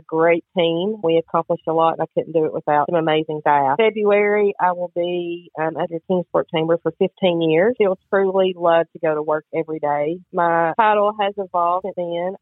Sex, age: female, 40-59